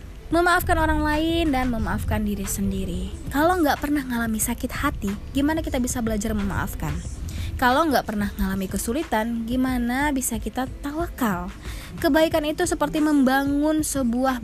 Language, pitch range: Indonesian, 200-290 Hz